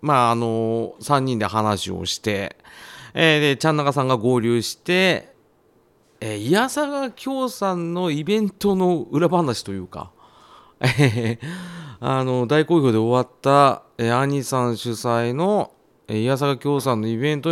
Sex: male